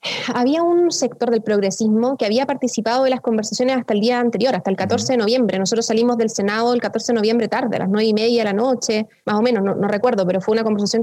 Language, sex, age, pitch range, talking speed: Spanish, female, 20-39, 215-250 Hz, 255 wpm